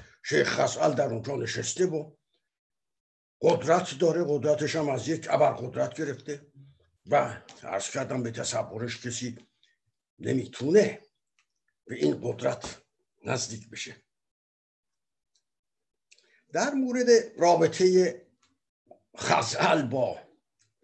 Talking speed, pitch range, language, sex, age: 90 wpm, 130-205 Hz, Persian, male, 60-79